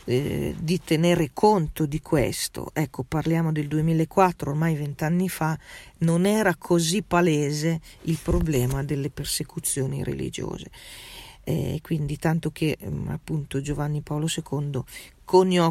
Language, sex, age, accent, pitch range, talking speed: Italian, female, 40-59, native, 140-165 Hz, 120 wpm